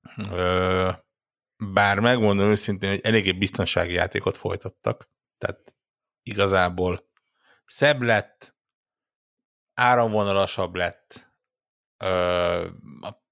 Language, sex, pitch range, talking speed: Hungarian, male, 90-105 Hz, 70 wpm